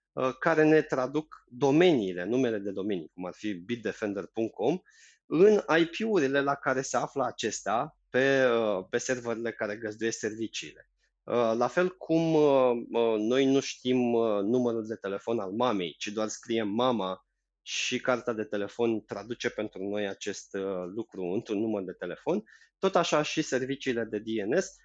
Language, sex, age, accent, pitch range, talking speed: Romanian, male, 20-39, native, 110-145 Hz, 140 wpm